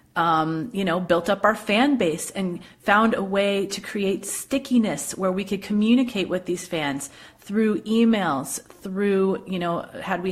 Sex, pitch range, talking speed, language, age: female, 170-205 Hz, 170 wpm, English, 30-49